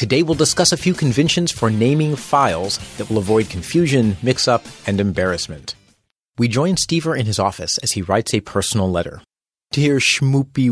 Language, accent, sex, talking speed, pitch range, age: English, American, male, 170 wpm, 100-140 Hz, 30-49